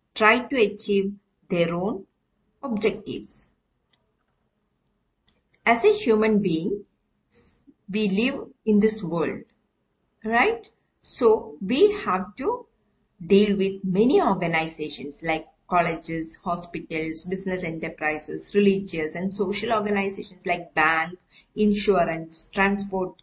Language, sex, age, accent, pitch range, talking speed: Malayalam, female, 50-69, native, 185-225 Hz, 95 wpm